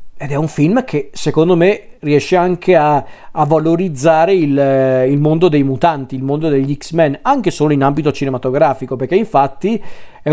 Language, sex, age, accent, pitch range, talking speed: Italian, male, 40-59, native, 135-155 Hz, 170 wpm